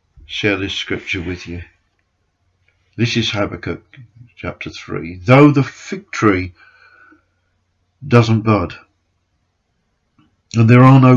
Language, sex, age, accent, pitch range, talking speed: English, male, 50-69, British, 90-115 Hz, 105 wpm